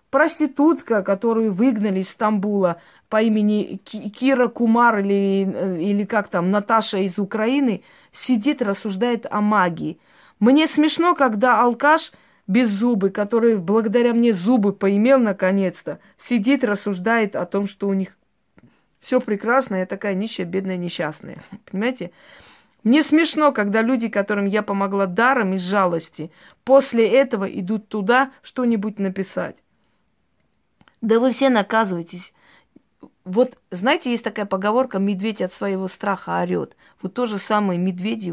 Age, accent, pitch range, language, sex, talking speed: 20-39, native, 195-250 Hz, Russian, female, 130 wpm